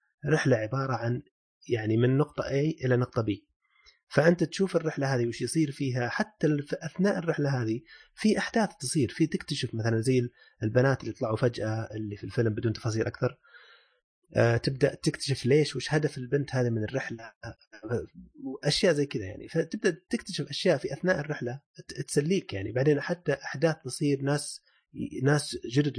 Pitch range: 120-155 Hz